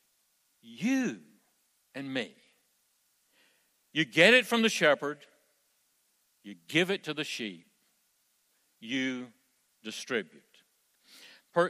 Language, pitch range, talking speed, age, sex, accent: English, 130-185 Hz, 85 wpm, 60-79, male, American